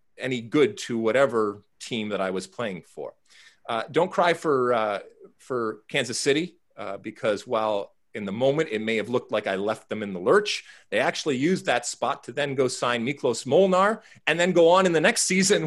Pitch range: 105-160 Hz